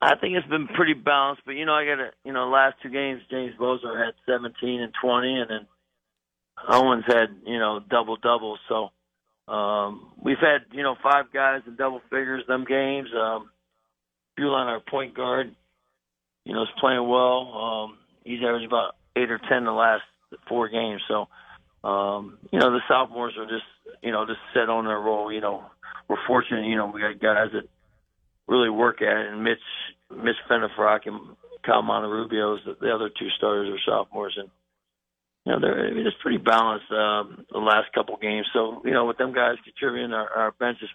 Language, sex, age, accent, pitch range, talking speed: English, male, 50-69, American, 105-125 Hz, 195 wpm